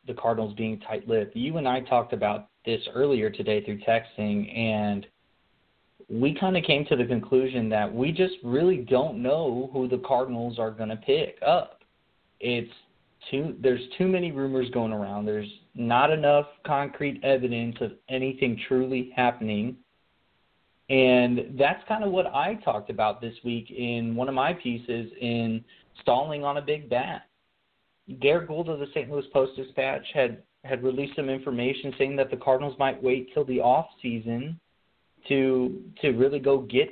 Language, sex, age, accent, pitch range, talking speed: English, male, 30-49, American, 120-150 Hz, 165 wpm